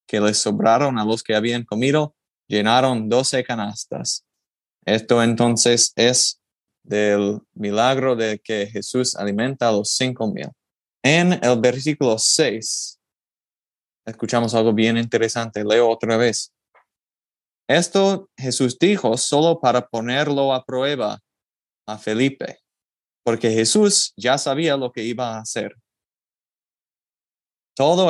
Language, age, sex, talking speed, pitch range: English, 20-39, male, 115 wpm, 110-135 Hz